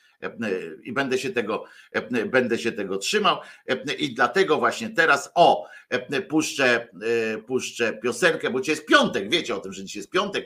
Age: 50-69